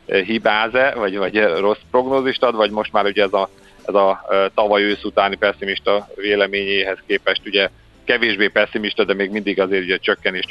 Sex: male